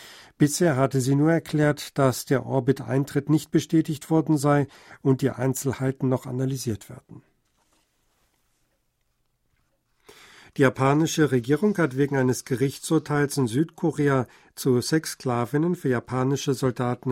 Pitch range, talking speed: 130-150 Hz, 115 wpm